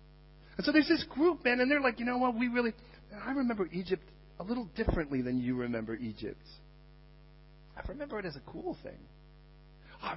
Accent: American